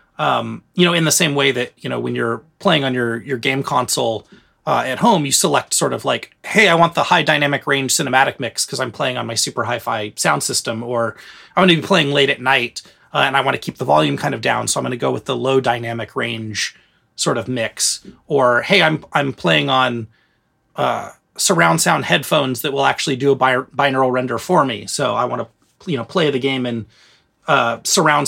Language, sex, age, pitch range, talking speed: English, male, 30-49, 115-145 Hz, 230 wpm